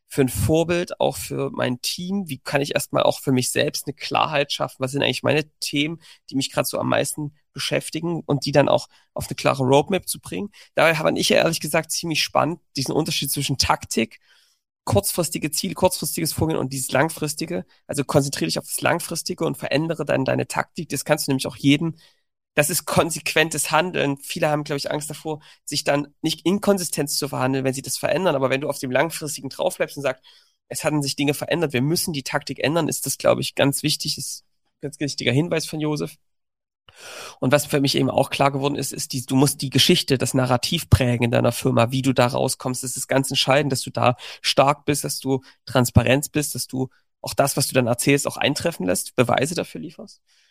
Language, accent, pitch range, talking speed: German, German, 135-155 Hz, 215 wpm